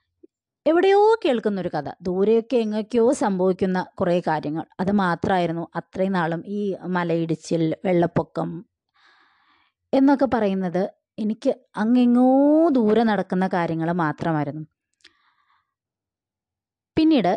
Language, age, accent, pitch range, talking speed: Malayalam, 20-39, native, 170-260 Hz, 85 wpm